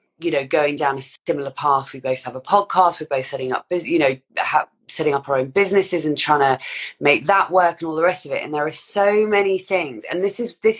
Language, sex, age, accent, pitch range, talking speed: English, female, 20-39, British, 140-180 Hz, 250 wpm